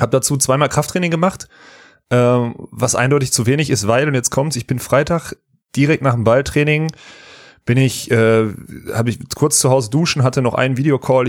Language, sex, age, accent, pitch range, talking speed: German, male, 30-49, German, 115-140 Hz, 175 wpm